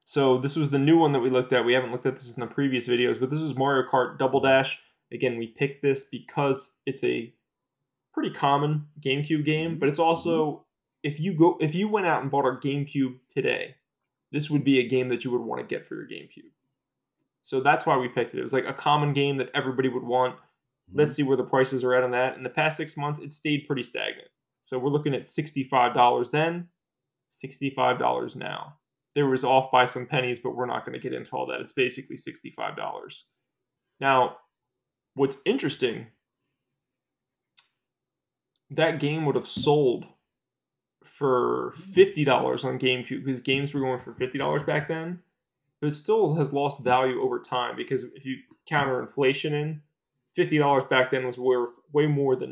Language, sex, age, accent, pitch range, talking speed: English, male, 20-39, American, 130-150 Hz, 190 wpm